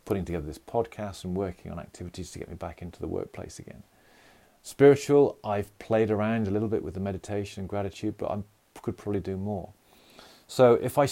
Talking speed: 200 wpm